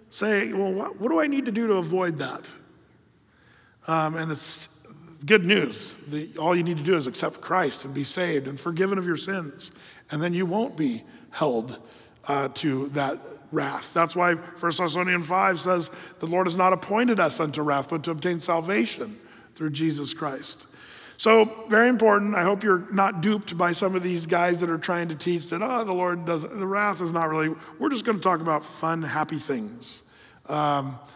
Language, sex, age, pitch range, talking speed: English, male, 40-59, 155-195 Hz, 195 wpm